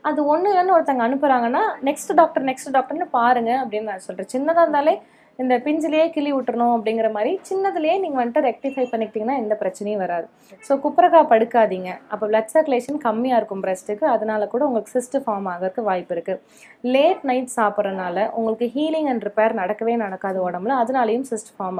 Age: 20-39